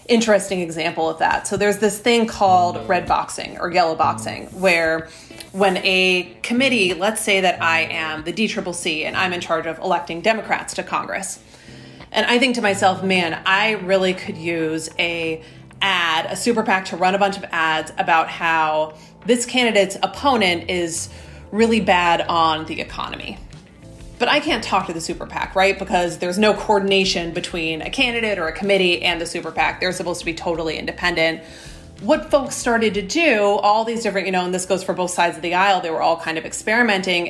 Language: English